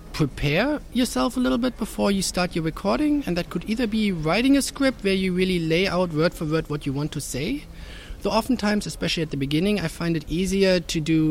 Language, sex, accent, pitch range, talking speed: Polish, male, German, 130-175 Hz, 230 wpm